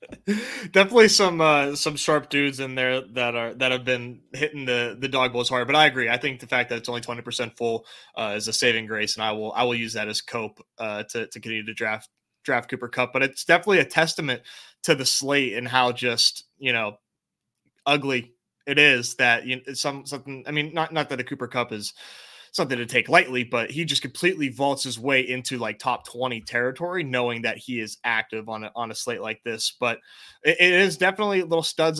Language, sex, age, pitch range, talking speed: English, male, 20-39, 120-155 Hz, 230 wpm